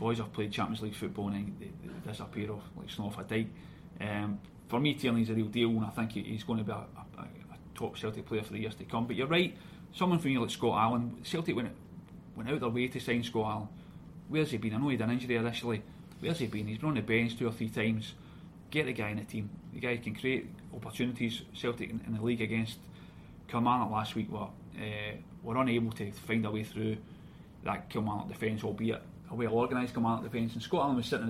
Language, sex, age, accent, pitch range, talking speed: English, male, 30-49, British, 110-125 Hz, 245 wpm